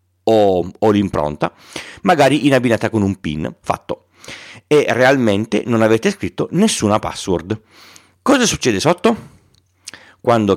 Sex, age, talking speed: male, 40-59, 115 wpm